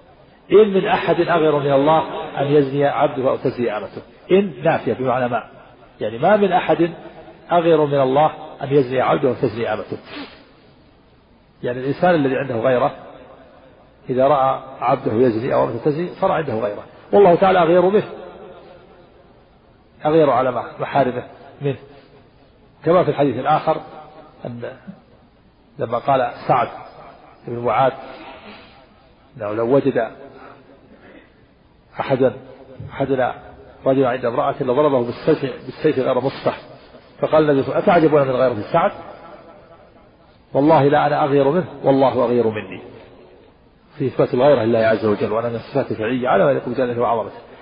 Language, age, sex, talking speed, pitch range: Arabic, 50-69, male, 130 wpm, 130-155 Hz